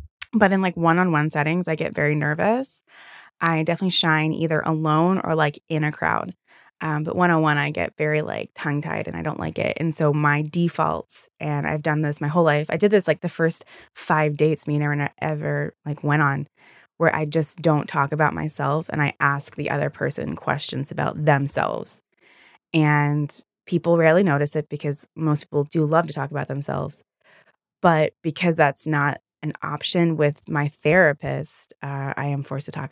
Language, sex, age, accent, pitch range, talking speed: English, female, 20-39, American, 145-175 Hz, 190 wpm